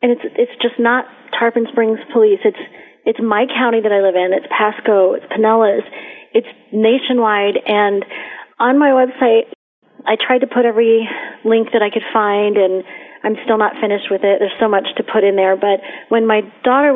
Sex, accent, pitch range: female, American, 190-230 Hz